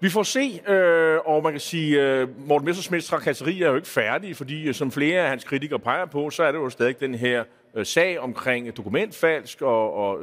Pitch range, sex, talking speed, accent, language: 145-185 Hz, male, 205 wpm, native, Danish